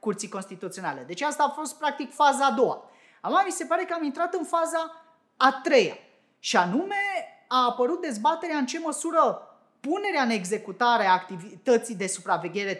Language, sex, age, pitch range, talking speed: Romanian, female, 30-49, 185-295 Hz, 165 wpm